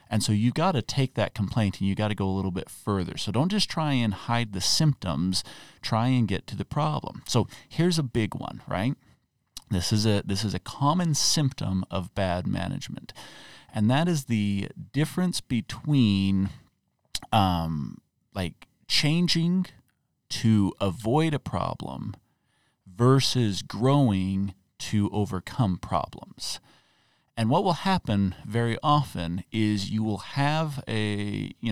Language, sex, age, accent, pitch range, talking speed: English, male, 40-59, American, 100-140 Hz, 150 wpm